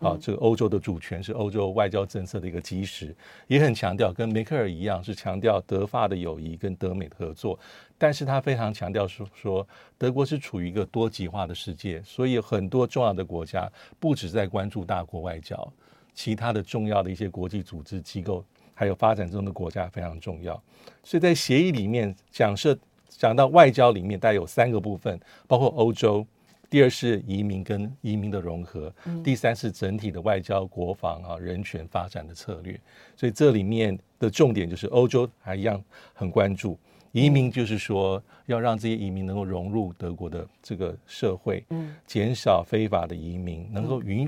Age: 50-69